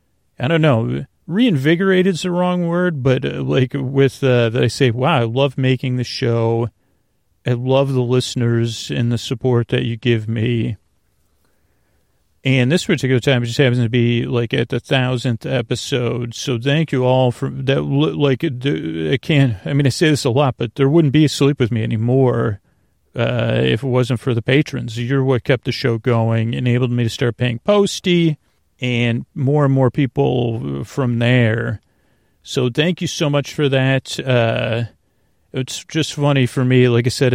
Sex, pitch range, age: male, 120-140 Hz, 40-59